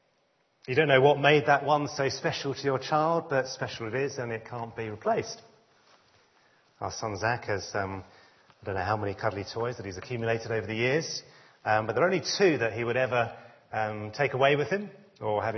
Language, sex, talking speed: English, male, 215 wpm